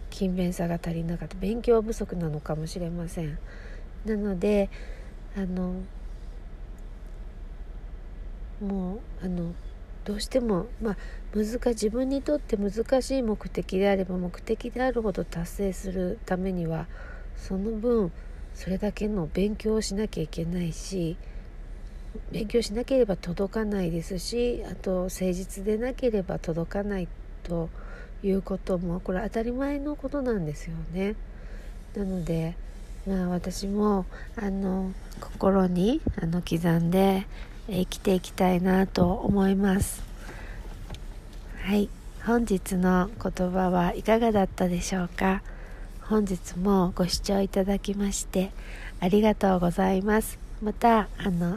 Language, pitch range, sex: Japanese, 175-210 Hz, female